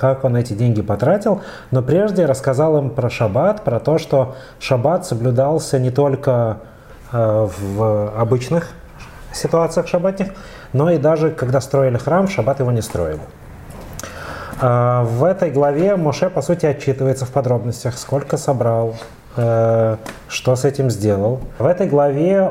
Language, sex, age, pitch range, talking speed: Russian, male, 30-49, 110-145 Hz, 135 wpm